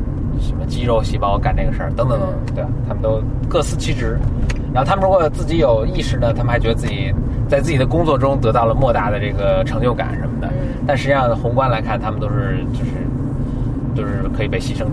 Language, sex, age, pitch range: Chinese, male, 20-39, 120-135 Hz